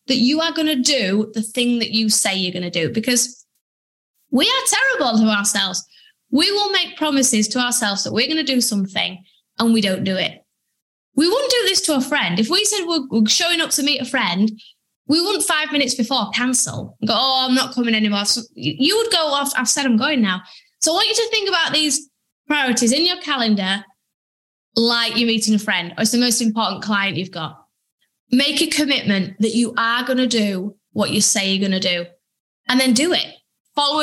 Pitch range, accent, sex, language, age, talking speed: 220-295 Hz, British, female, English, 20-39, 215 wpm